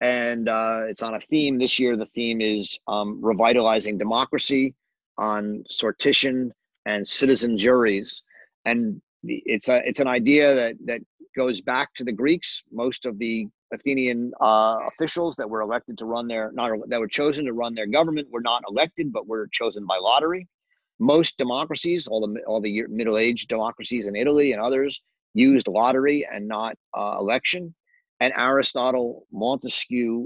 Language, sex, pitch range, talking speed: English, male, 110-140 Hz, 165 wpm